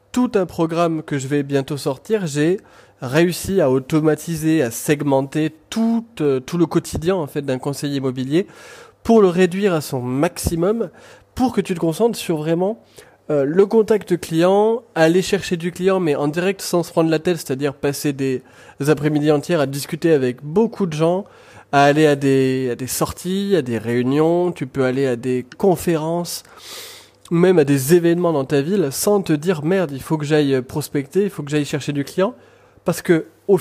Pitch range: 140-185 Hz